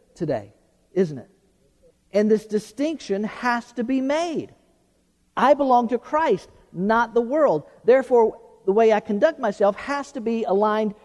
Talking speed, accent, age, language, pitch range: 145 wpm, American, 50-69, English, 185-255 Hz